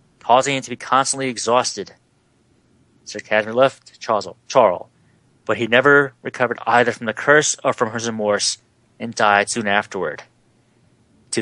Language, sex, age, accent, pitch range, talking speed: English, male, 30-49, American, 100-130 Hz, 140 wpm